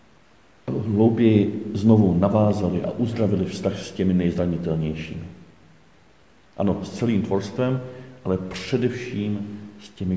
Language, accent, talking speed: Czech, native, 100 wpm